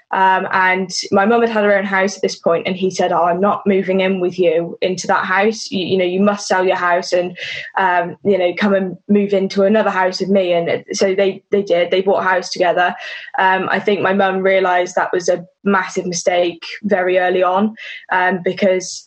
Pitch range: 185-210 Hz